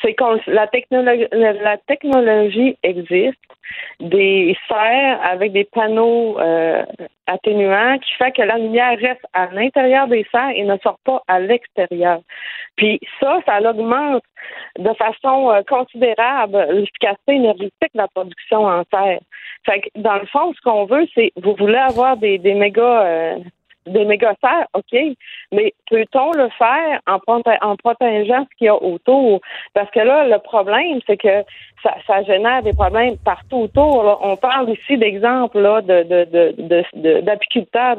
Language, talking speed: French, 145 wpm